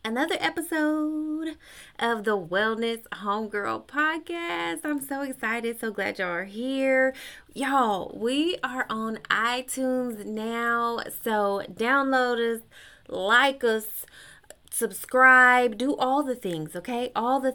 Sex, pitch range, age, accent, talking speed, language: female, 190-250 Hz, 20-39, American, 115 wpm, English